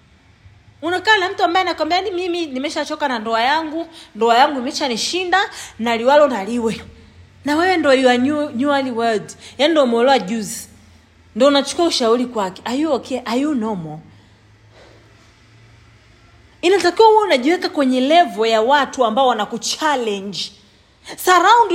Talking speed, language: 140 wpm, English